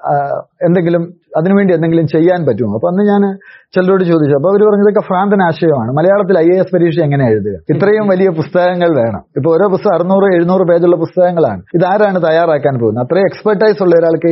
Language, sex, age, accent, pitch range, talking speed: Malayalam, male, 30-49, native, 145-190 Hz, 170 wpm